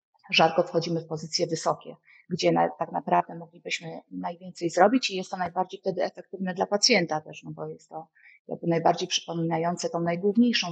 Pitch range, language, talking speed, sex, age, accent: 170-205 Hz, Polish, 170 wpm, female, 30-49, native